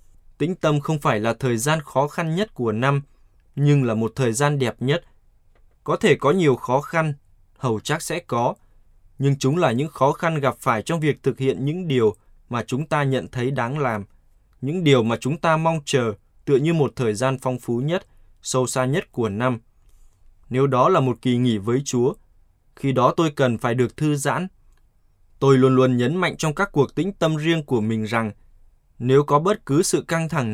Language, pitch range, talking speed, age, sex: Vietnamese, 110-145 Hz, 210 wpm, 20-39, male